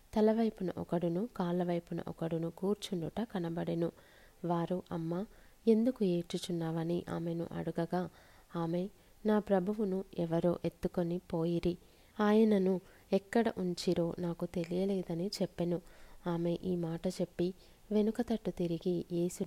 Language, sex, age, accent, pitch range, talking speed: Telugu, female, 20-39, native, 175-195 Hz, 100 wpm